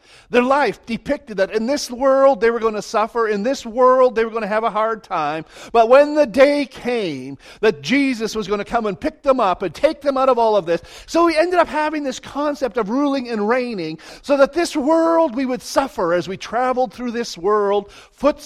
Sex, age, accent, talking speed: male, 50-69, American, 230 wpm